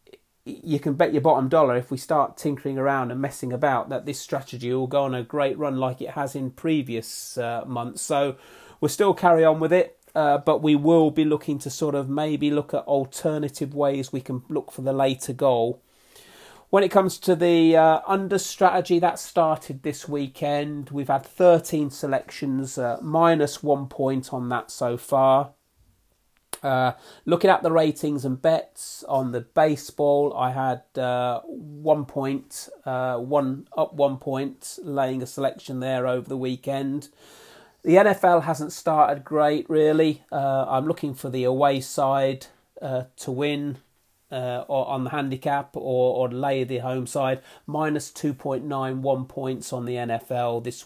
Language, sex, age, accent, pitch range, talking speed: English, male, 30-49, British, 130-155 Hz, 170 wpm